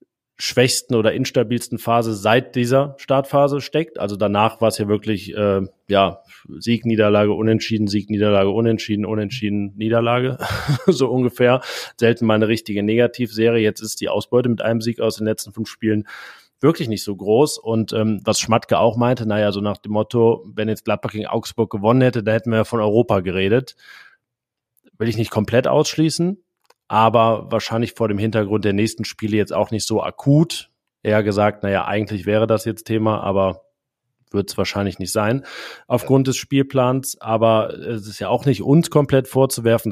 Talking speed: 175 wpm